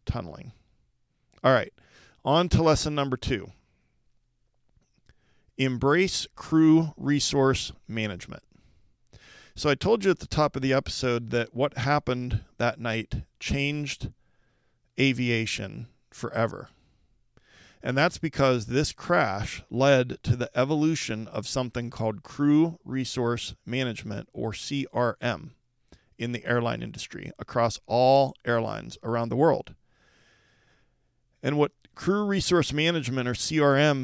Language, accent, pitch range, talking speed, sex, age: English, American, 115-140 Hz, 115 wpm, male, 40-59